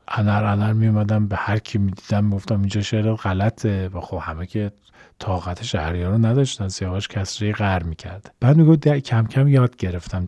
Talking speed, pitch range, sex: 185 wpm, 100-130 Hz, male